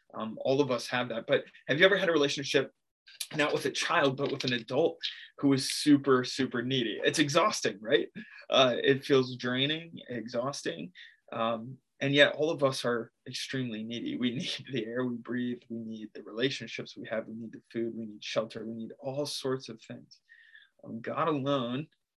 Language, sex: English, male